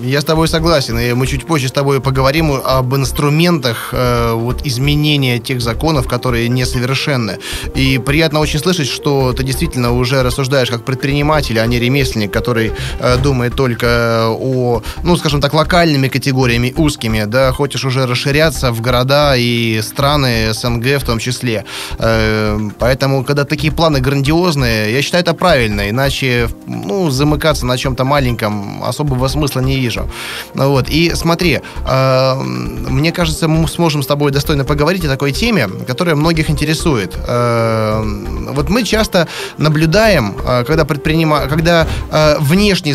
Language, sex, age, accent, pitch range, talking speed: Russian, male, 20-39, native, 125-165 Hz, 140 wpm